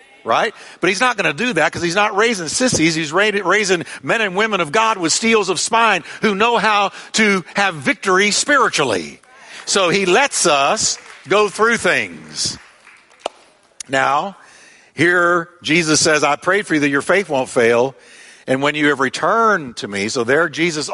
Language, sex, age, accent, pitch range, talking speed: English, male, 50-69, American, 130-190 Hz, 180 wpm